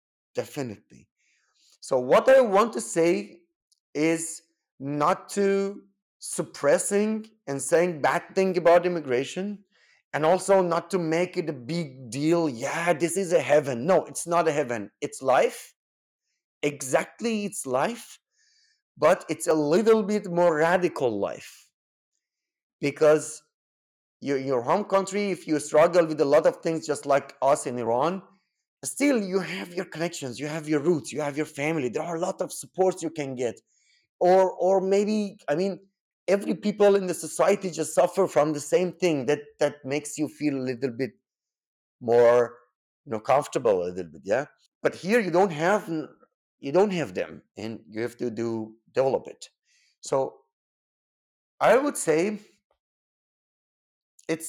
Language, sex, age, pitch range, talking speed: English, male, 30-49, 145-195 Hz, 155 wpm